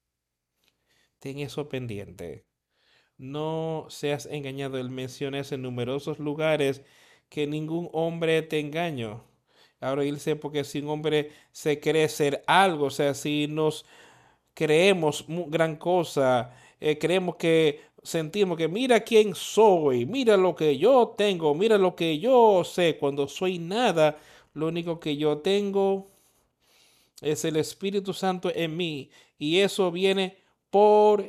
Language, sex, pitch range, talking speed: Spanish, male, 145-180 Hz, 130 wpm